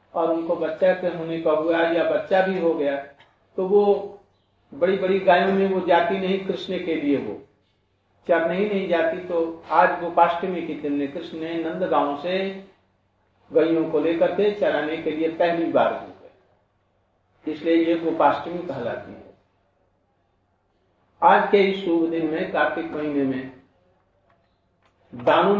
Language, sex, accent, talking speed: Hindi, male, native, 145 wpm